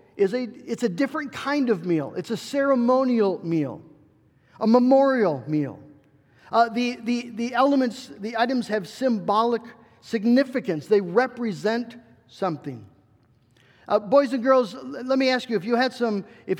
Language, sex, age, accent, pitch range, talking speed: English, male, 50-69, American, 185-255 Hz, 150 wpm